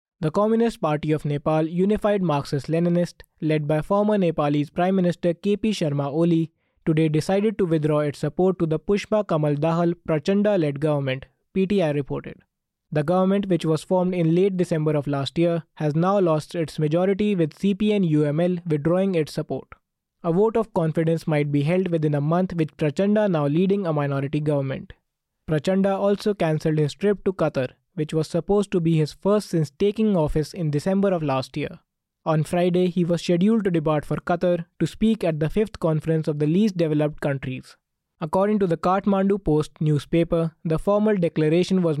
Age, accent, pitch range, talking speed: 20-39, Indian, 155-190 Hz, 175 wpm